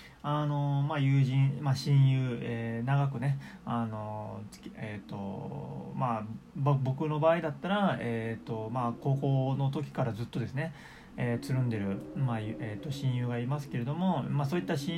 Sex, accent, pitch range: male, native, 125-165 Hz